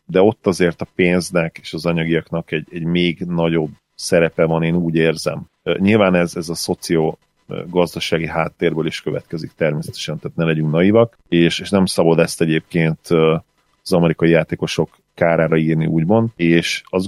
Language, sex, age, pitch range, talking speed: Hungarian, male, 30-49, 80-85 Hz, 160 wpm